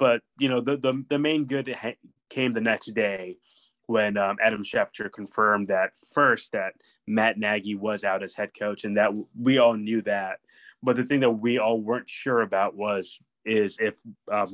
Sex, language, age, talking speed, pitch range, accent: male, English, 20-39, 190 wpm, 100-115 Hz, American